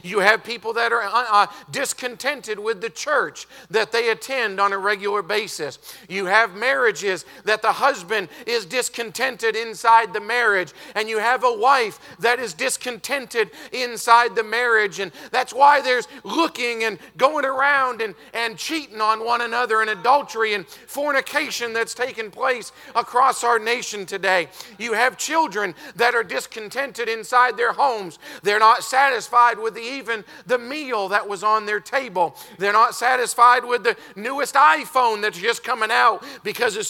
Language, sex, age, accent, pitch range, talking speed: English, male, 40-59, American, 220-260 Hz, 160 wpm